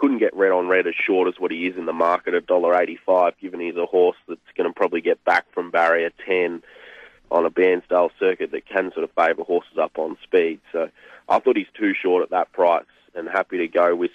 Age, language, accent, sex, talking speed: 30-49, English, Australian, male, 240 wpm